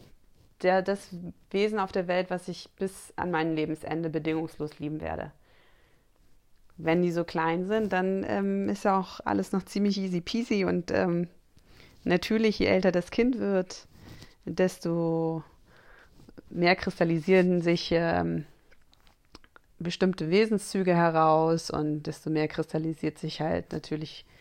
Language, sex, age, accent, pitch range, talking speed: German, female, 30-49, German, 155-185 Hz, 130 wpm